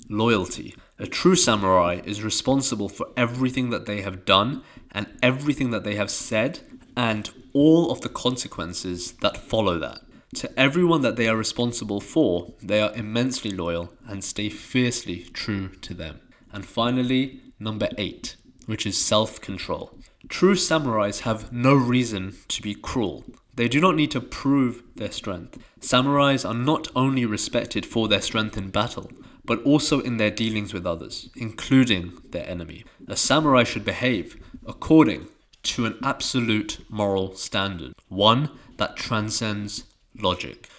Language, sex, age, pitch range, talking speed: English, male, 20-39, 100-130 Hz, 145 wpm